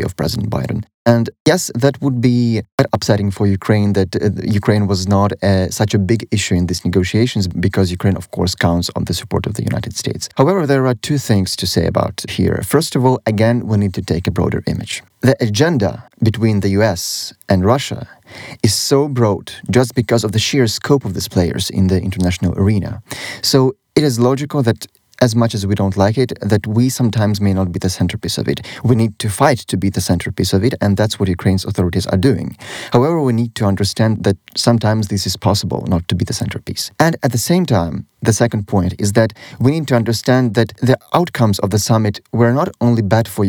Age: 30-49